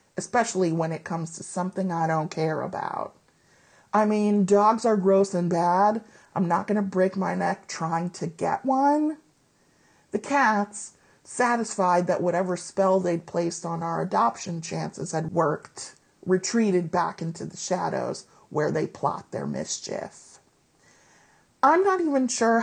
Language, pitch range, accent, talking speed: English, 170-210 Hz, American, 150 wpm